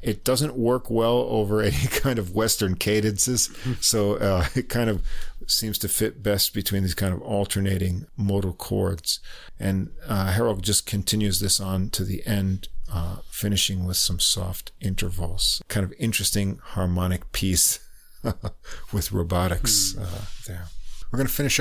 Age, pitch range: 50-69, 95-125 Hz